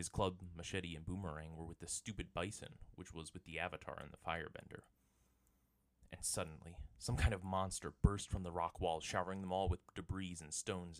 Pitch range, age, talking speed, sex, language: 80-95 Hz, 20-39, 195 wpm, male, English